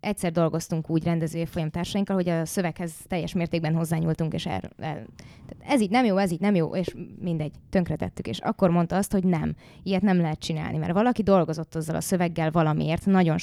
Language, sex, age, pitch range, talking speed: English, female, 20-39, 155-190 Hz, 190 wpm